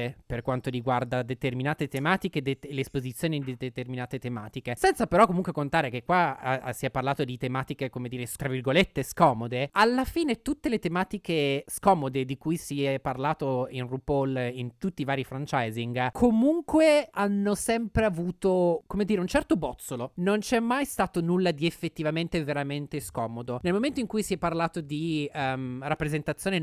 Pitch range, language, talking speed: 135-190 Hz, Italian, 160 wpm